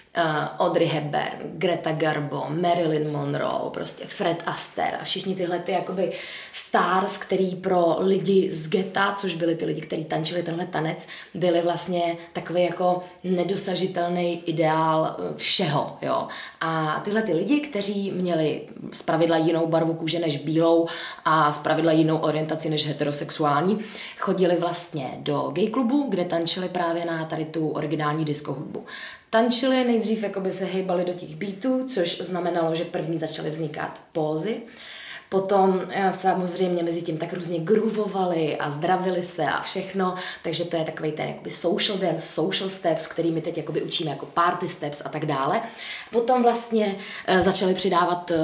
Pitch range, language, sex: 160-190 Hz, Czech, female